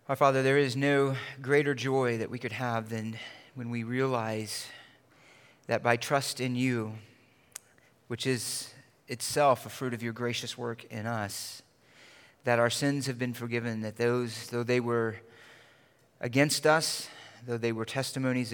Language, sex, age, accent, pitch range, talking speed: English, male, 30-49, American, 115-130 Hz, 155 wpm